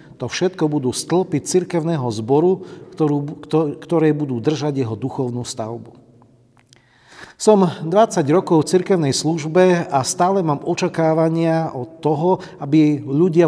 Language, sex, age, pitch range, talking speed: Slovak, male, 40-59, 130-170 Hz, 120 wpm